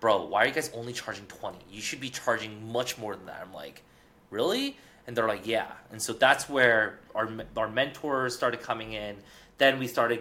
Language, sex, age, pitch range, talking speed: English, male, 20-39, 110-135 Hz, 210 wpm